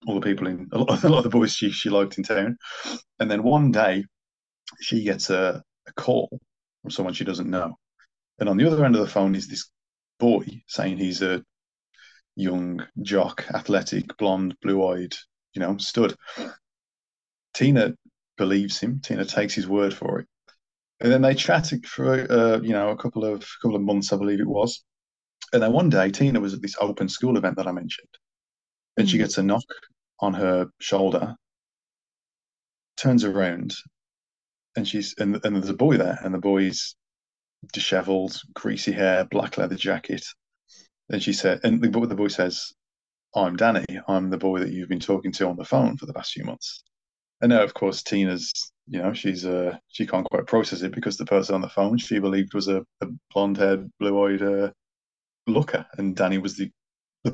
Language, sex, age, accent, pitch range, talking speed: English, male, 20-39, British, 95-105 Hz, 190 wpm